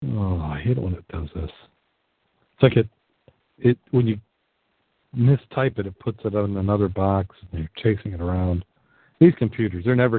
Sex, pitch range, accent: male, 95-120 Hz, American